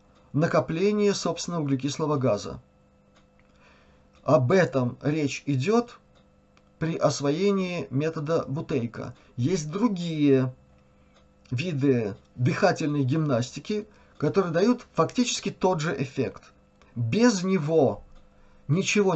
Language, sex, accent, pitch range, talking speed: Russian, male, native, 120-175 Hz, 80 wpm